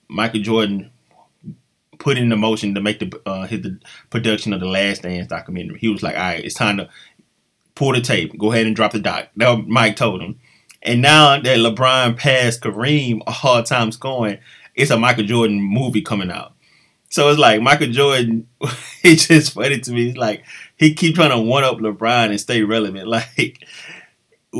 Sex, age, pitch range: male, 20-39, 100-125 Hz